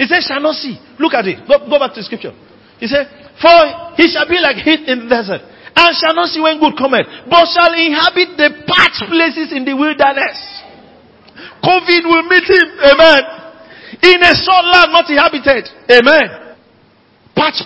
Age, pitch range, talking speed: 50-69, 200-315 Hz, 185 wpm